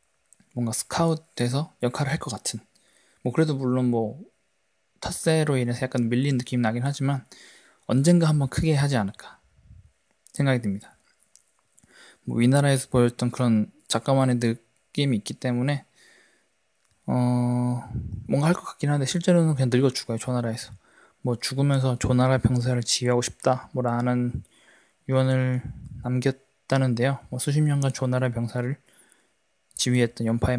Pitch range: 120-140 Hz